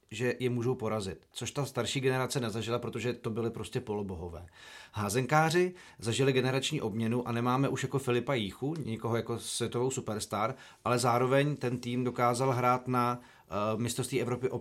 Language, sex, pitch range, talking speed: Czech, male, 120-135 Hz, 160 wpm